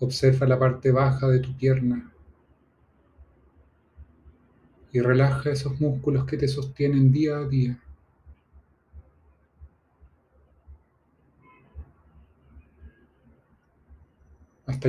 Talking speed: 75 wpm